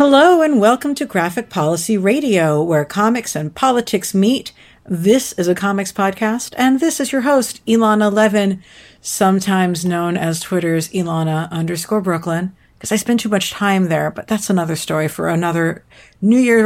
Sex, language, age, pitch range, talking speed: female, English, 50-69, 170-220 Hz, 165 wpm